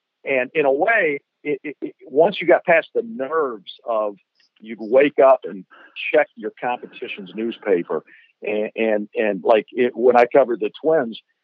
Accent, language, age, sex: American, English, 50-69, male